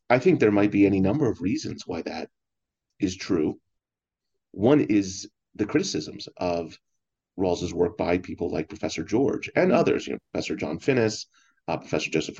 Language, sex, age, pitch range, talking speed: English, male, 30-49, 90-120 Hz, 170 wpm